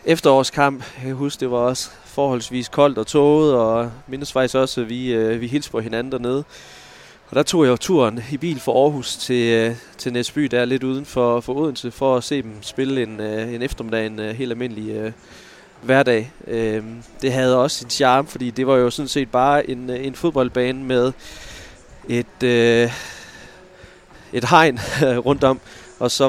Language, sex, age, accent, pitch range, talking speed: Danish, male, 20-39, native, 115-135 Hz, 185 wpm